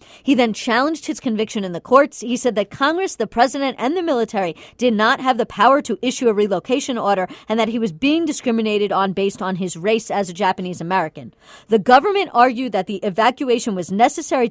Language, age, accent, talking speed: English, 40-59, American, 205 wpm